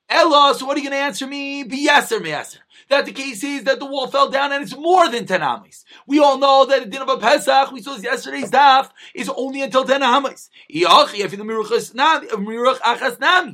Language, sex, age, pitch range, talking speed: English, male, 30-49, 215-280 Hz, 190 wpm